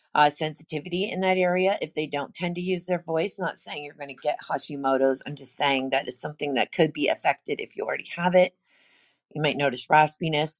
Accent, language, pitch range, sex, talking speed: American, English, 150-180 Hz, female, 220 wpm